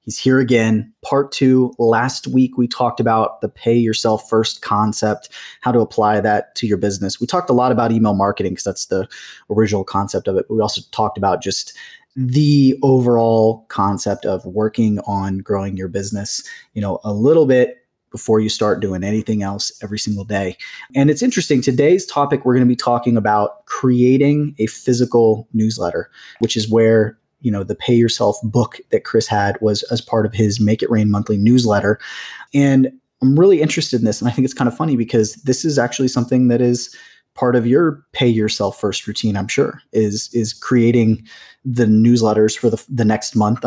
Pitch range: 105-125 Hz